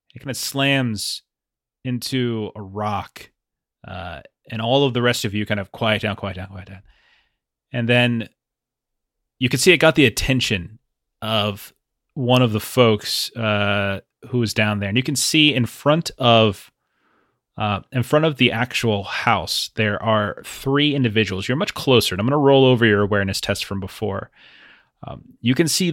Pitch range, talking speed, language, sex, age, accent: 105-125 Hz, 180 wpm, English, male, 30-49, American